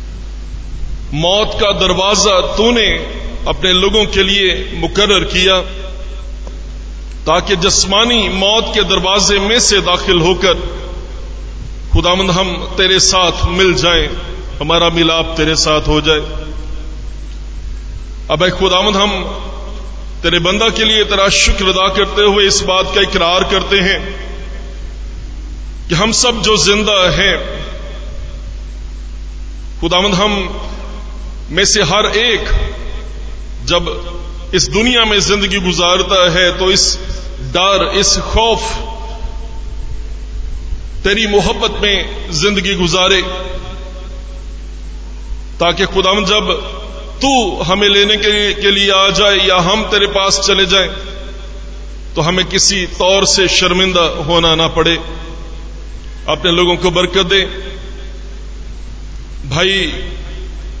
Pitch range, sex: 155-200 Hz, male